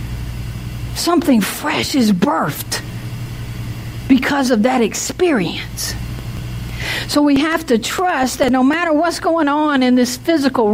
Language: English